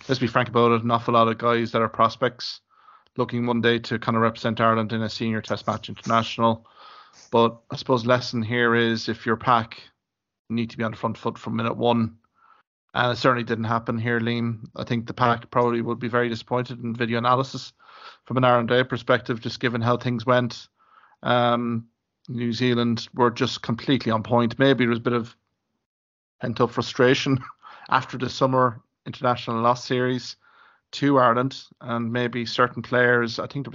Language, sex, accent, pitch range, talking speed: English, male, Irish, 115-125 Hz, 190 wpm